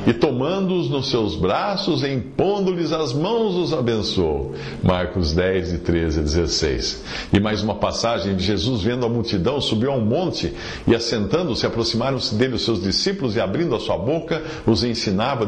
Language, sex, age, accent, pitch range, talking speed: English, male, 60-79, Brazilian, 90-125 Hz, 170 wpm